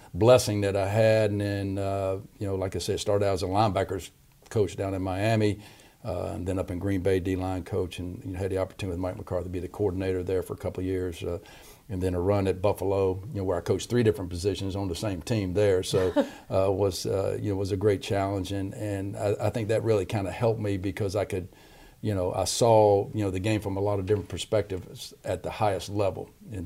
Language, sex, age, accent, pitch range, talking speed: English, male, 50-69, American, 95-105 Hz, 245 wpm